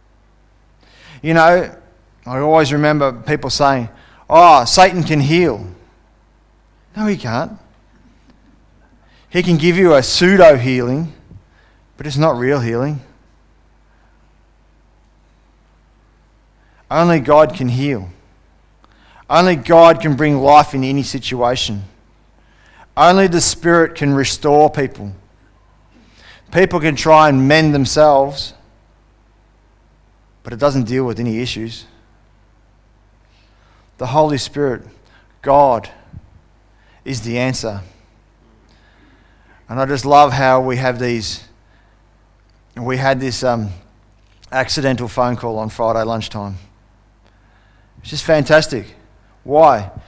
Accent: Australian